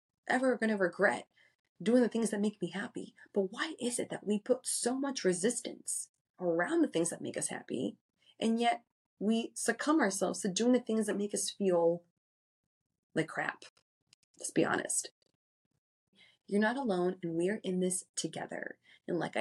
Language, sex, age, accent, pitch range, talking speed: English, female, 30-49, American, 165-215 Hz, 175 wpm